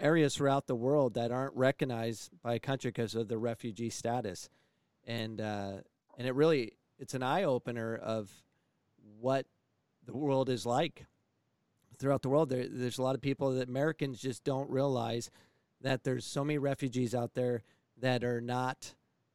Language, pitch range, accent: English, 120-135 Hz, American